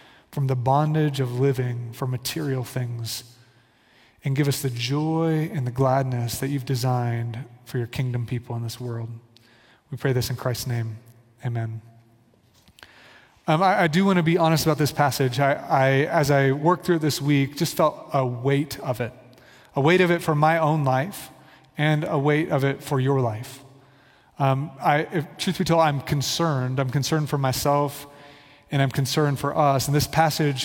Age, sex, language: 30-49, male, English